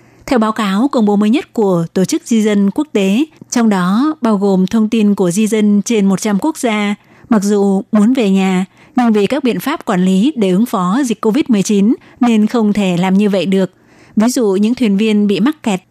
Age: 20-39